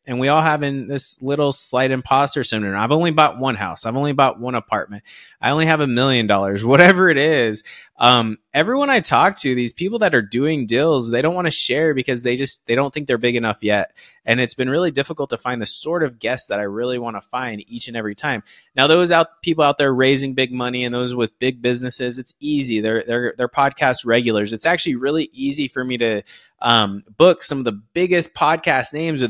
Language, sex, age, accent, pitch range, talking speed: English, male, 20-39, American, 120-150 Hz, 230 wpm